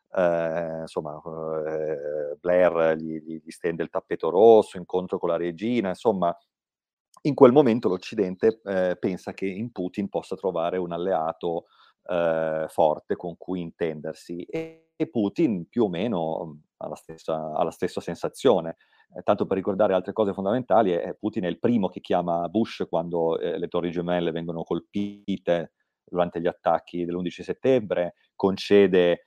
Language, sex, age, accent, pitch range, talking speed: Italian, male, 30-49, native, 85-100 Hz, 150 wpm